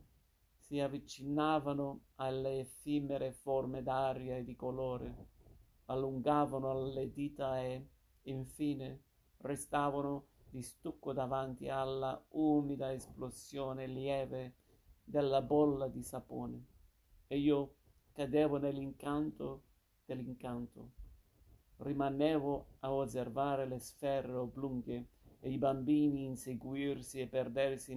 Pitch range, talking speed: 125-140 Hz, 90 wpm